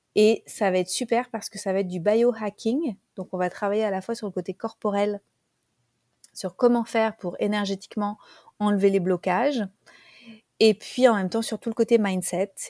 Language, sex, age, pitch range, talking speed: French, female, 30-49, 195-230 Hz, 195 wpm